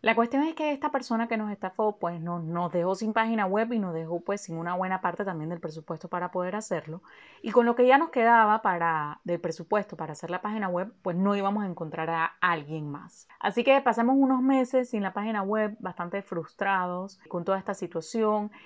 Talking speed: 220 wpm